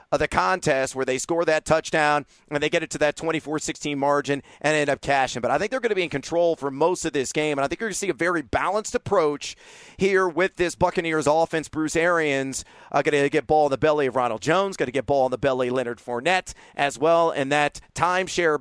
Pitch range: 145-185 Hz